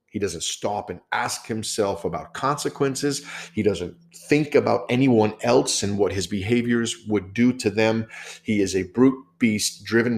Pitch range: 95-125 Hz